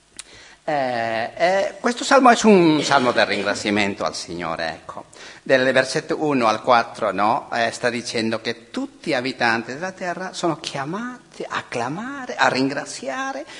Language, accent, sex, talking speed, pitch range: Italian, native, male, 145 wpm, 145-245 Hz